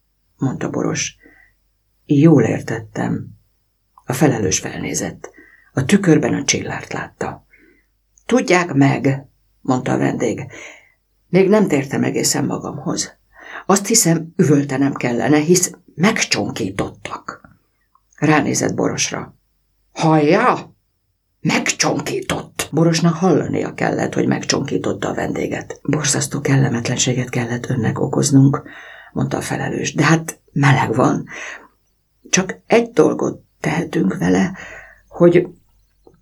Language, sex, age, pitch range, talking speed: Hungarian, female, 60-79, 120-165 Hz, 95 wpm